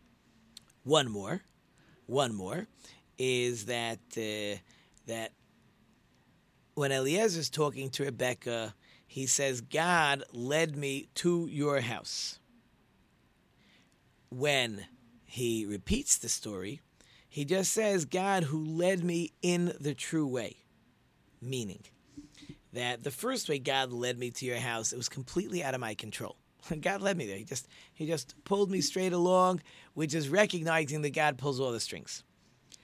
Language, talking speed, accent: English, 140 wpm, American